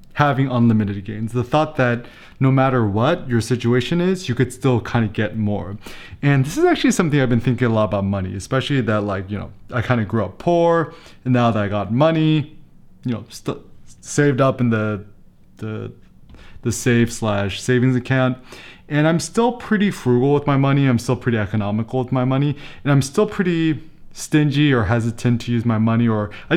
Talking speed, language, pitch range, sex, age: 200 wpm, English, 110-145 Hz, male, 20-39